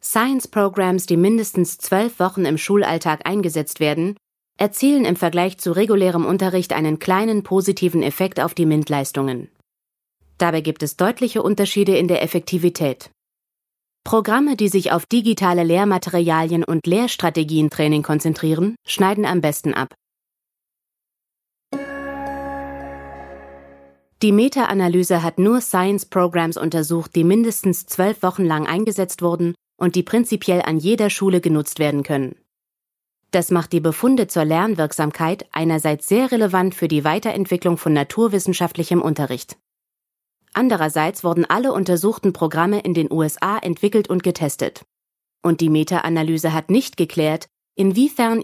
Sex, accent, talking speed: female, German, 125 wpm